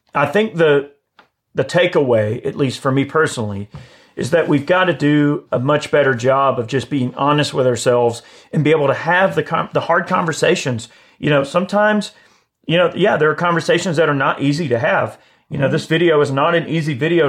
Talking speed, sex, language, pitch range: 205 wpm, male, English, 125-155 Hz